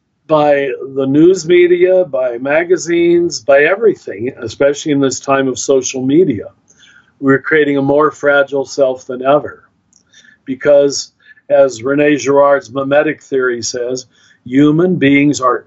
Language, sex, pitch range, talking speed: English, male, 135-160 Hz, 125 wpm